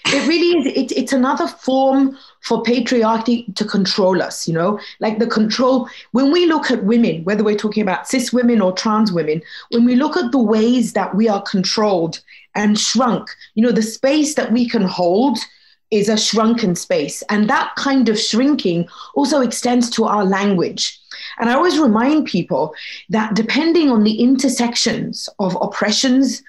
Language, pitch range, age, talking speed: English, 205-260 Hz, 30-49, 170 wpm